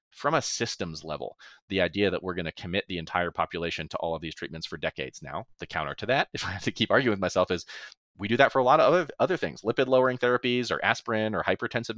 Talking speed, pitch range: 260 wpm, 85-115 Hz